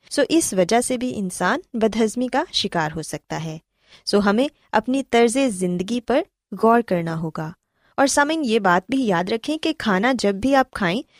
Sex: female